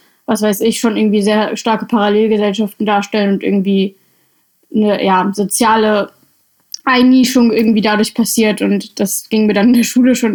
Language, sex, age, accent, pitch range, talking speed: German, female, 10-29, German, 200-225 Hz, 150 wpm